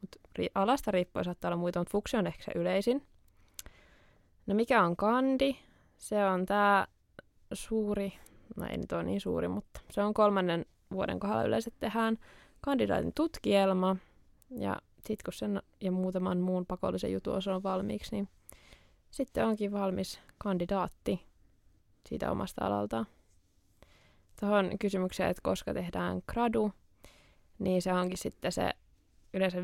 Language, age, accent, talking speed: Finnish, 20-39, native, 130 wpm